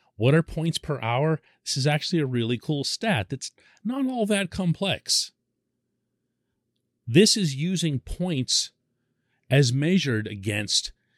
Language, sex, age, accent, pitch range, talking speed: English, male, 40-59, American, 105-155 Hz, 130 wpm